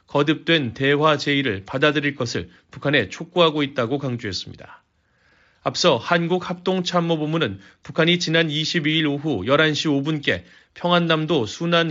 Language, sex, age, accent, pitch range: Korean, male, 30-49, native, 140-165 Hz